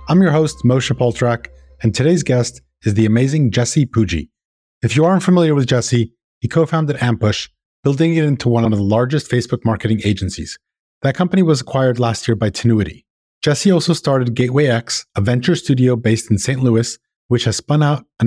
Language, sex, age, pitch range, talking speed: English, male, 30-49, 115-150 Hz, 190 wpm